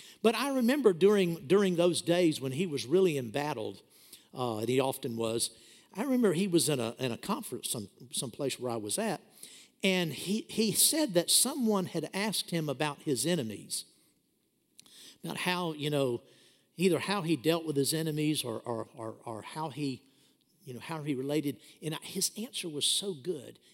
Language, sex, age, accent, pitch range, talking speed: English, male, 60-79, American, 140-200 Hz, 185 wpm